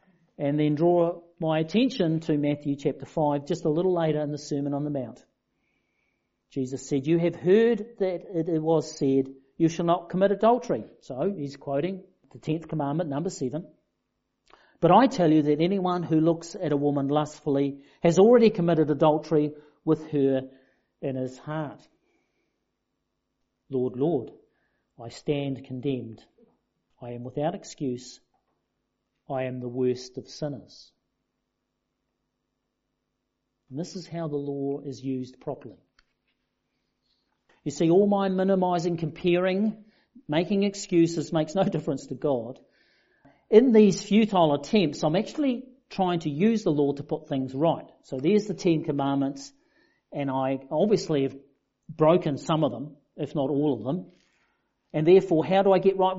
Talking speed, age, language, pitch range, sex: 150 wpm, 50-69, English, 140-180 Hz, male